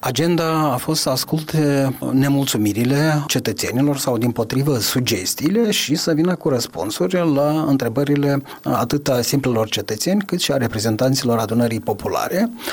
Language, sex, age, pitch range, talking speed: Romanian, male, 30-49, 130-155 Hz, 130 wpm